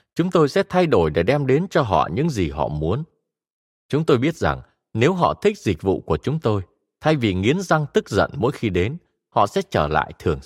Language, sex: Vietnamese, male